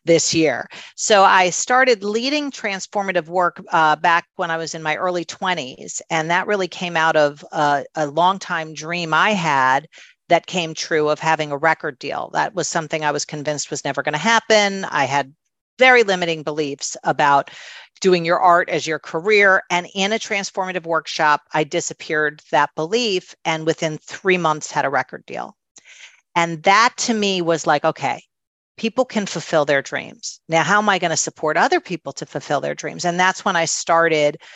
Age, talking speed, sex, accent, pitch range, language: 40-59, 185 wpm, female, American, 155-190 Hz, English